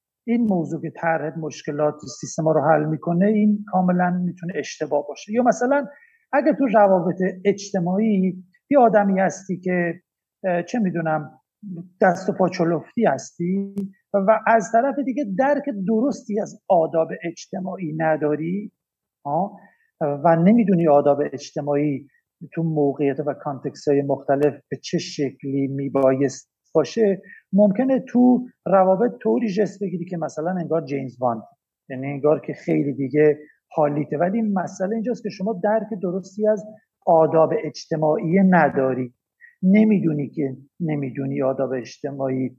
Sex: male